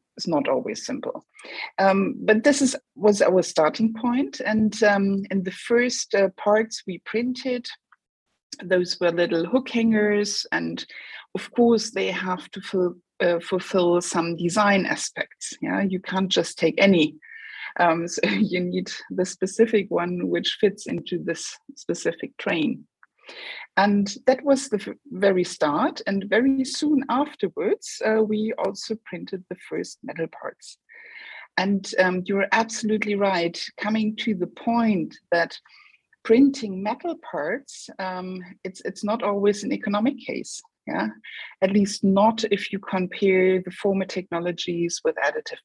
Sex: female